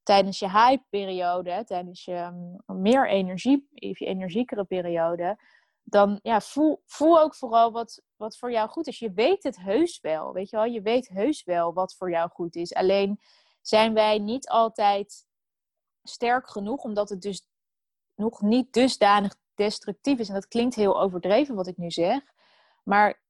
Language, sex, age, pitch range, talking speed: Dutch, female, 20-39, 190-235 Hz, 170 wpm